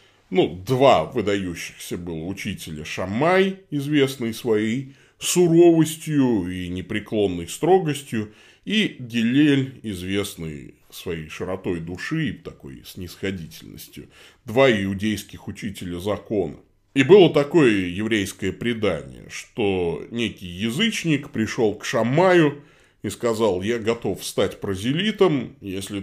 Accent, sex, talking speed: native, male, 100 wpm